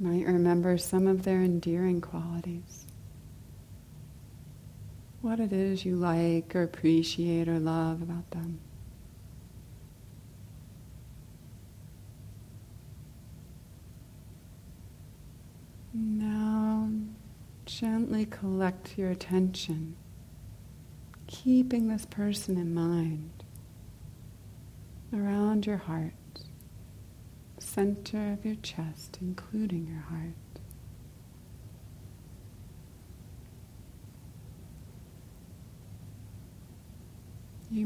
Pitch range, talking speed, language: 110-185 Hz, 65 wpm, English